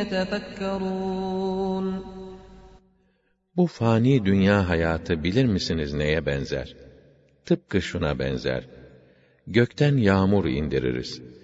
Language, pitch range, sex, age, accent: English, 85-105 Hz, male, 50-69, Turkish